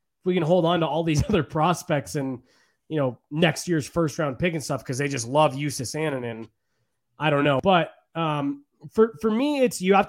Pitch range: 145-175 Hz